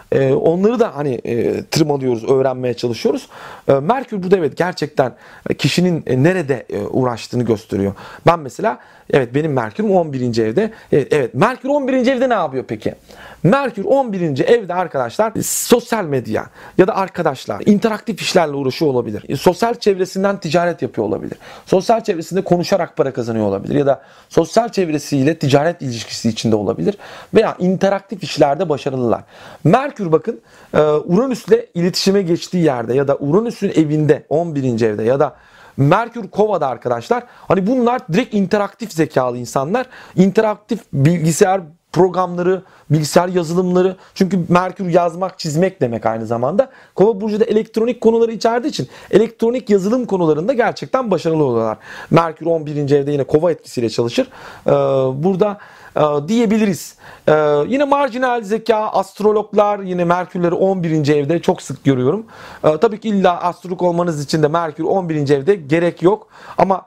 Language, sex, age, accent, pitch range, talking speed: Turkish, male, 40-59, native, 145-210 Hz, 130 wpm